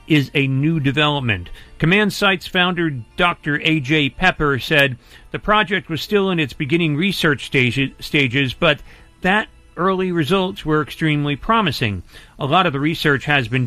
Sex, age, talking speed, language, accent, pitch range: male, 40-59, 150 wpm, English, American, 135-180 Hz